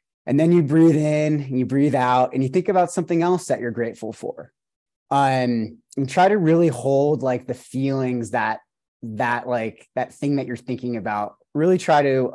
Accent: American